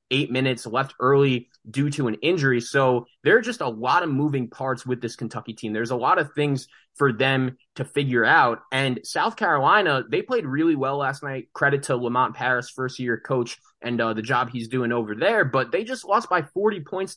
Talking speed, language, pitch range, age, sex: 215 wpm, English, 130-170 Hz, 20-39, male